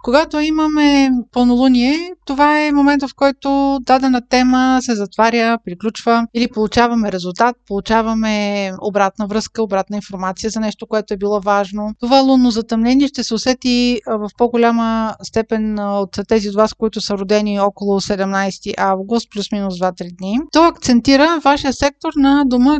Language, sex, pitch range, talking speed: Bulgarian, female, 205-255 Hz, 145 wpm